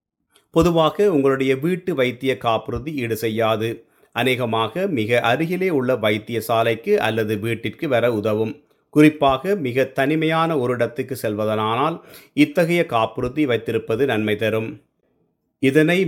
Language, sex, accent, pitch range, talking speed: Tamil, male, native, 115-150 Hz, 110 wpm